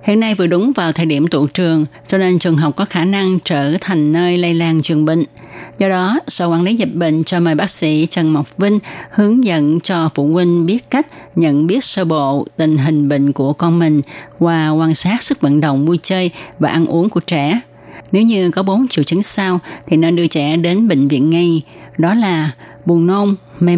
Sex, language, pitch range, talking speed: female, Vietnamese, 150-185 Hz, 220 wpm